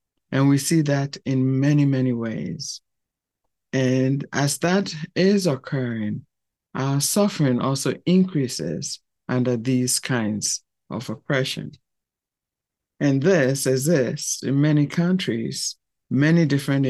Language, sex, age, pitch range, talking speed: English, male, 60-79, 125-150 Hz, 105 wpm